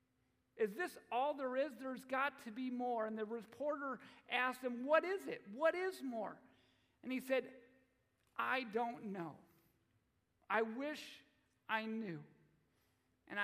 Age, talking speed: 50-69, 145 wpm